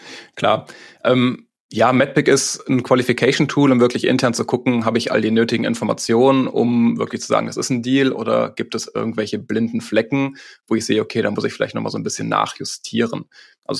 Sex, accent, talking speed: male, German, 200 wpm